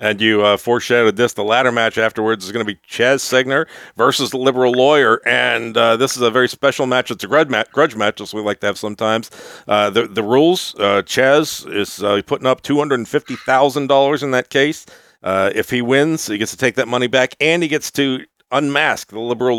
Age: 50-69